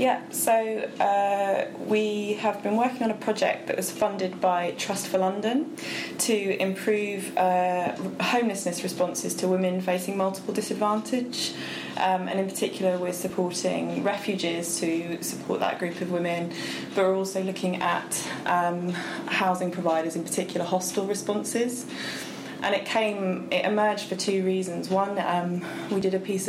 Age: 20-39